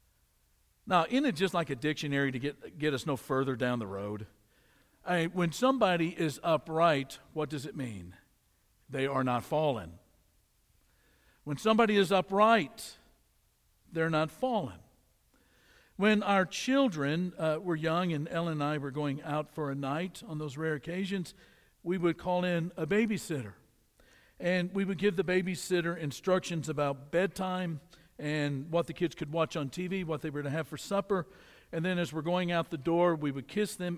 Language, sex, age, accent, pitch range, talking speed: English, male, 60-79, American, 140-190 Hz, 175 wpm